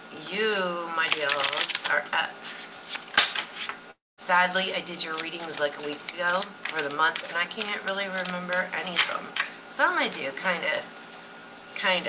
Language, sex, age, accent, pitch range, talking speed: English, female, 40-59, American, 160-230 Hz, 155 wpm